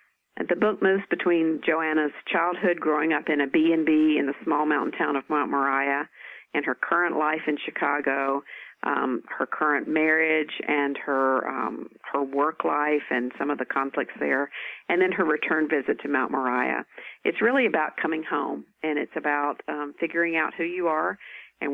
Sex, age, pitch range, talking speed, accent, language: female, 50-69, 145-170 Hz, 175 wpm, American, English